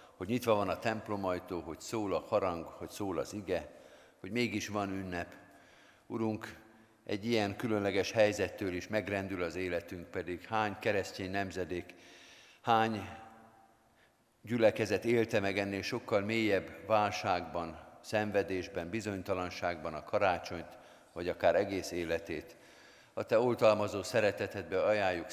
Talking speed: 120 wpm